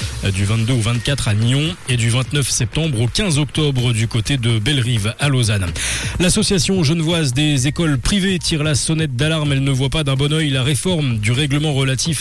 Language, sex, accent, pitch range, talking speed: French, male, French, 115-150 Hz, 195 wpm